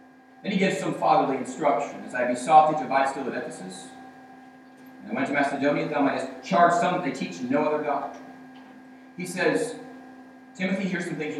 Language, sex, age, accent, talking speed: English, male, 40-59, American, 190 wpm